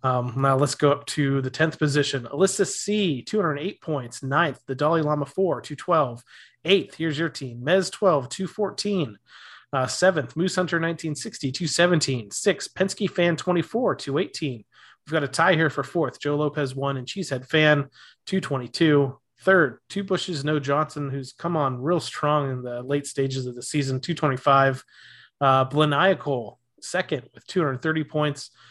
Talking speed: 155 wpm